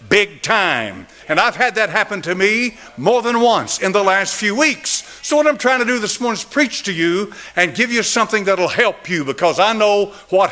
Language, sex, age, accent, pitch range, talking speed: English, male, 60-79, American, 205-285 Hz, 235 wpm